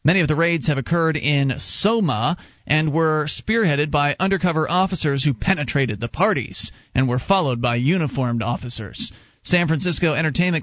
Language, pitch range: English, 140-185 Hz